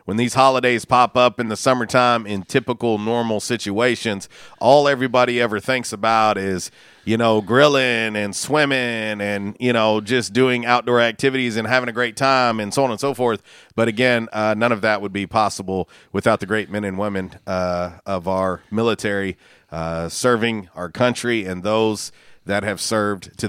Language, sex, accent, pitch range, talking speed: English, male, American, 95-115 Hz, 180 wpm